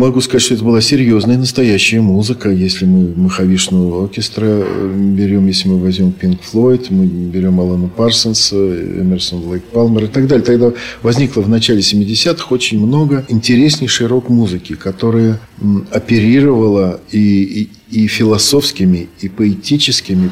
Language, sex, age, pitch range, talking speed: Russian, male, 50-69, 95-115 Hz, 135 wpm